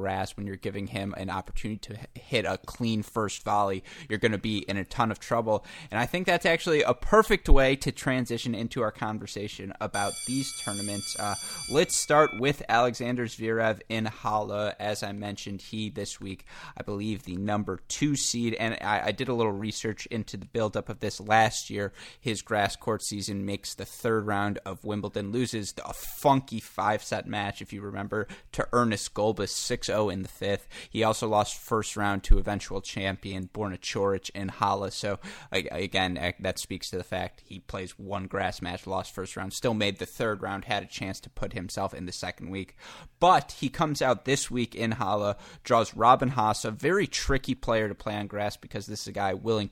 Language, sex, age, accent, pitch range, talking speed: English, male, 20-39, American, 100-115 Hz, 200 wpm